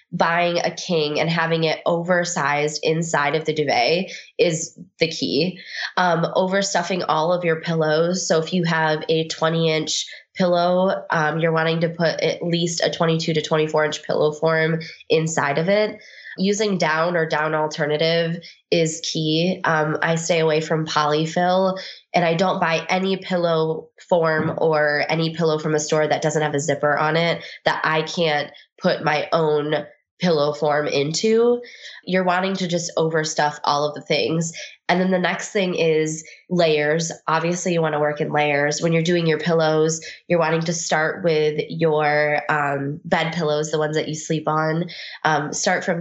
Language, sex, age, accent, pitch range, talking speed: English, female, 20-39, American, 155-175 Hz, 170 wpm